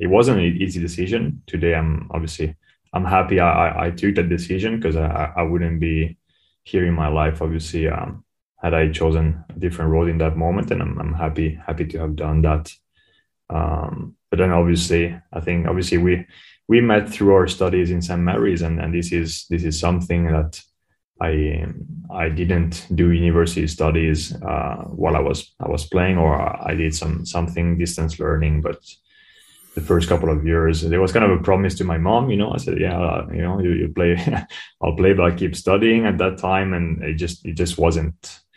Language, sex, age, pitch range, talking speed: German, male, 20-39, 80-95 Hz, 200 wpm